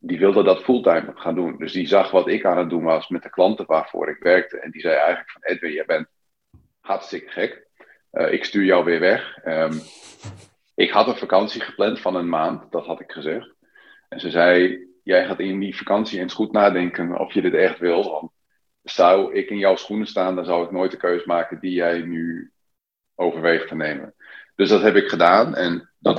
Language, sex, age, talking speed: Dutch, male, 40-59, 210 wpm